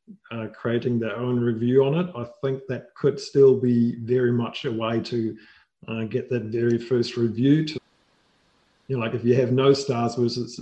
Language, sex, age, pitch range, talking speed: English, male, 50-69, 120-145 Hz, 190 wpm